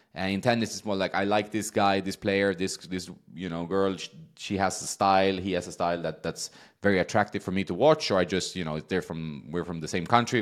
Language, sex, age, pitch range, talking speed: English, male, 20-39, 85-100 Hz, 270 wpm